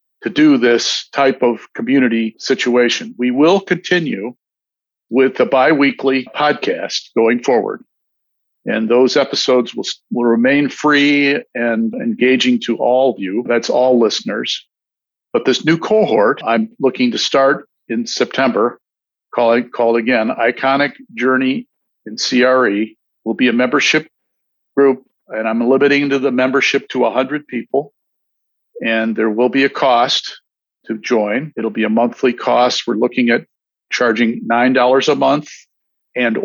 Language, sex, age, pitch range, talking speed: English, male, 50-69, 120-140 Hz, 135 wpm